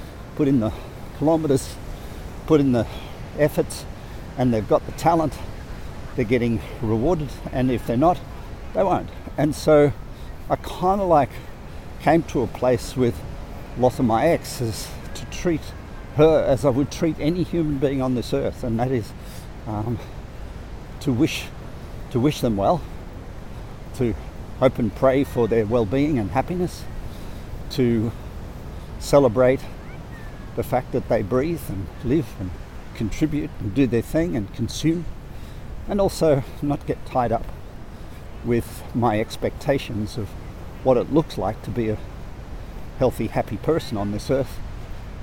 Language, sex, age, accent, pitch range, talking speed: English, male, 50-69, Australian, 105-135 Hz, 145 wpm